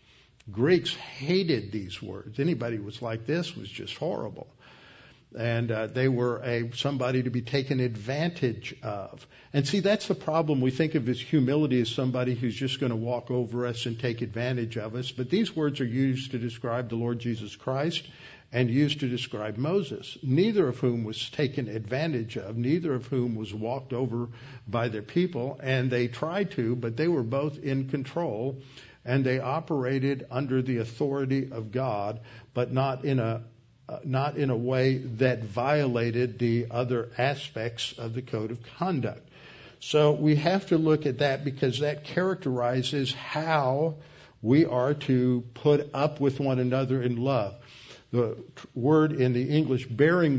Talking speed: 170 wpm